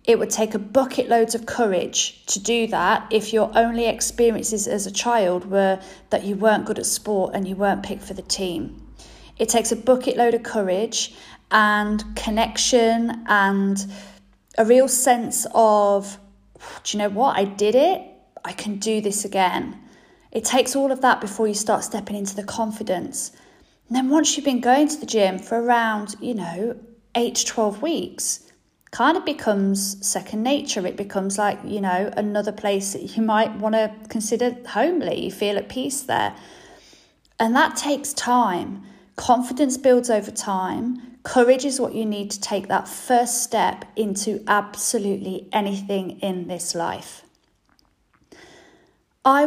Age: 40-59